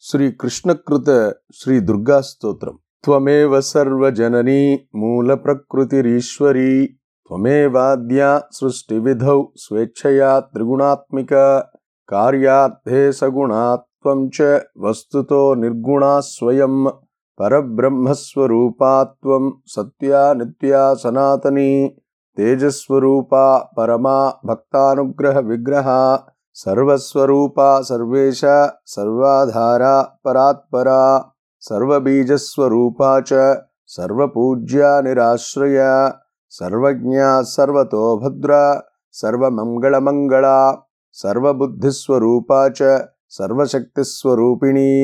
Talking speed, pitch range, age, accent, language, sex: 35 wpm, 125-140 Hz, 30-49, native, Telugu, male